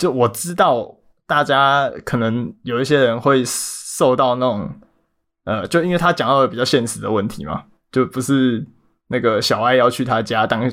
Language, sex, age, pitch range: Chinese, male, 20-39, 115-140 Hz